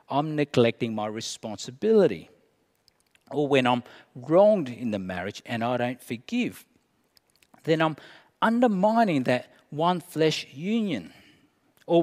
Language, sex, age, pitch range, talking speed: English, male, 50-69, 125-165 Hz, 110 wpm